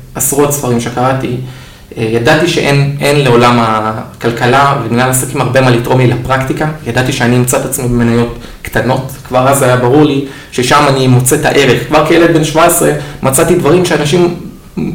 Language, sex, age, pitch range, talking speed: Hebrew, male, 20-39, 115-140 Hz, 150 wpm